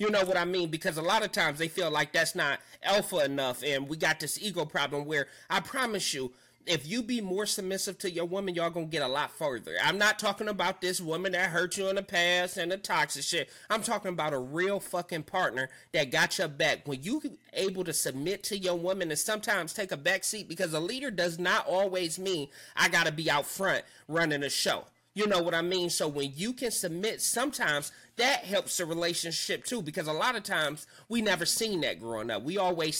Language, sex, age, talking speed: English, male, 30-49, 230 wpm